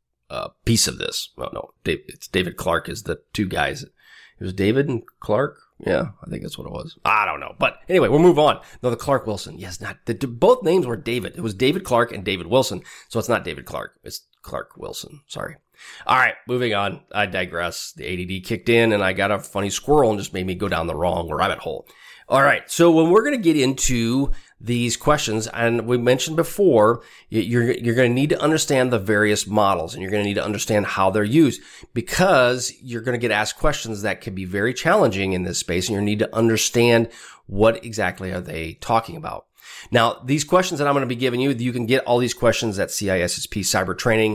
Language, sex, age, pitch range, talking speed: English, male, 30-49, 95-120 Hz, 225 wpm